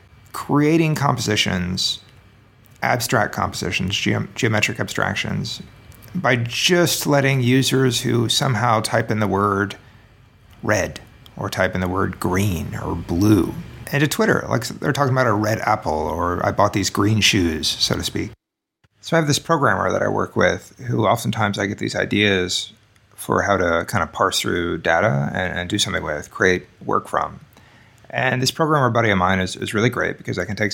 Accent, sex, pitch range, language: American, male, 95-120 Hz, English